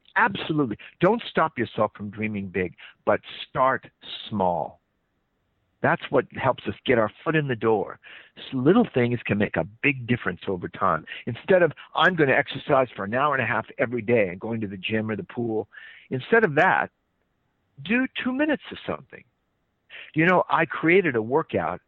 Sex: male